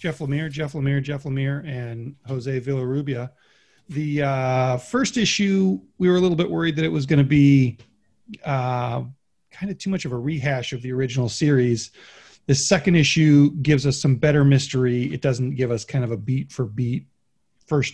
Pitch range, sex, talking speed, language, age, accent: 125-155 Hz, male, 180 wpm, English, 40-59, American